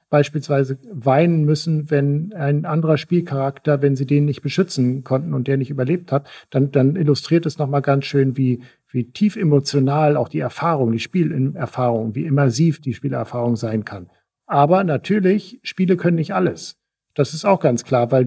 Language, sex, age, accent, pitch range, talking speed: German, male, 50-69, German, 130-160 Hz, 170 wpm